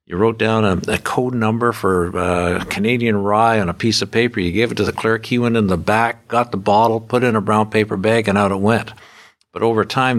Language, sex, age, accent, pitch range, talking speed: English, male, 60-79, American, 95-115 Hz, 260 wpm